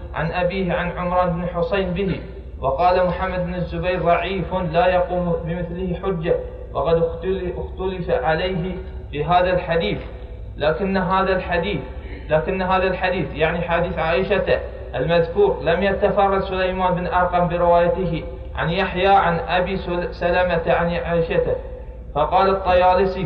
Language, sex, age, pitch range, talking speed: Arabic, male, 20-39, 170-190 Hz, 120 wpm